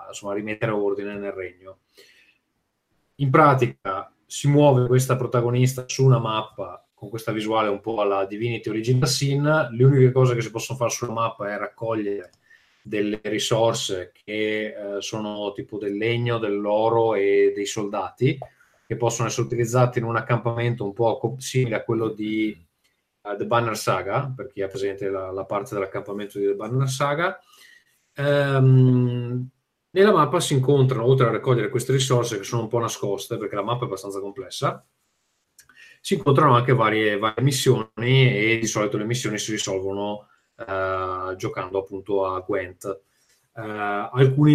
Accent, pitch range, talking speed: native, 105-130 Hz, 155 wpm